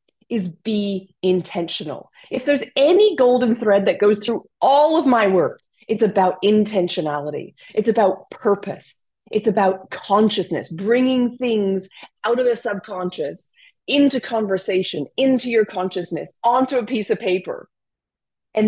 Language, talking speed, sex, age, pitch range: English, 130 wpm, female, 30-49, 190-250 Hz